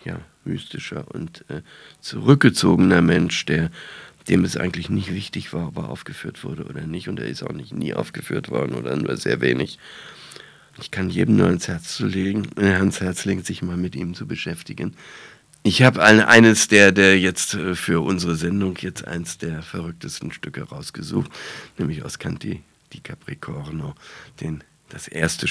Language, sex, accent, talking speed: German, male, German, 165 wpm